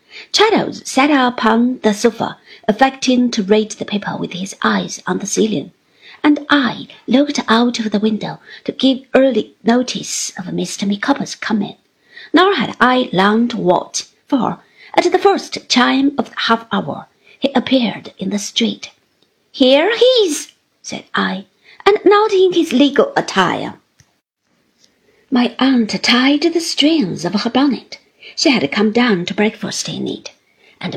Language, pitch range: Chinese, 210-285 Hz